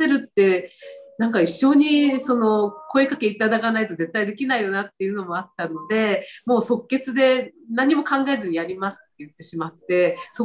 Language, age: Japanese, 40-59